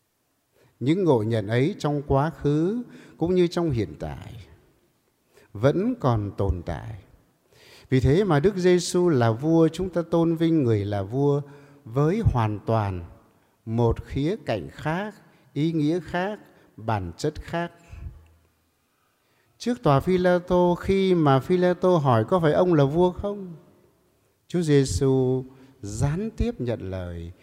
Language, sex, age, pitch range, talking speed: English, male, 60-79, 120-175 Hz, 135 wpm